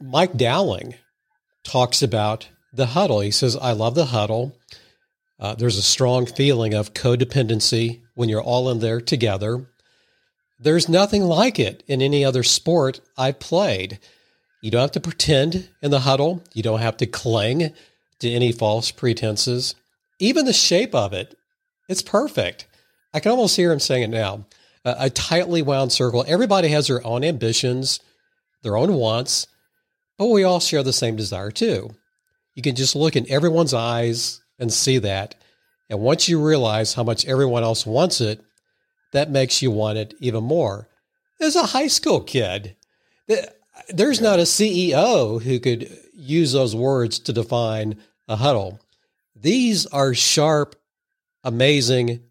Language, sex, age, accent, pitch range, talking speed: English, male, 50-69, American, 115-170 Hz, 155 wpm